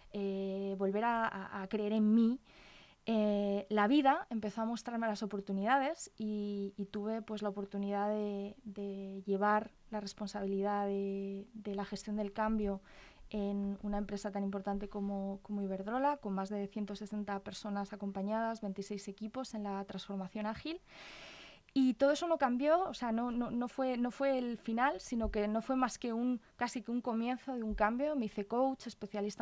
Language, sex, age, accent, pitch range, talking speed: Spanish, female, 20-39, Spanish, 205-250 Hz, 170 wpm